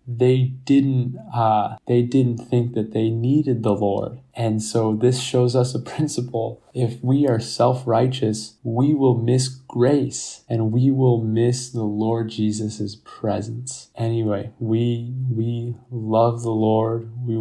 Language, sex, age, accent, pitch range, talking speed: English, male, 20-39, American, 105-125 Hz, 140 wpm